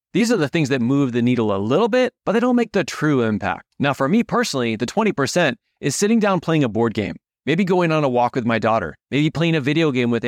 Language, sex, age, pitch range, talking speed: English, male, 30-49, 120-180 Hz, 265 wpm